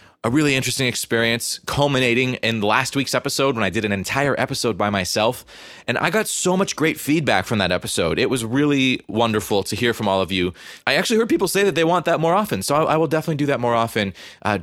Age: 30-49